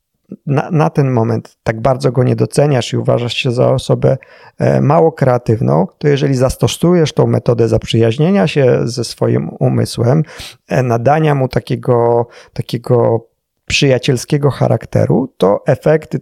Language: Polish